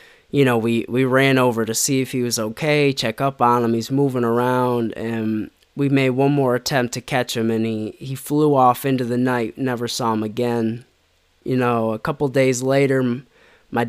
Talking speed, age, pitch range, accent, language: 205 wpm, 20-39, 120-140 Hz, American, English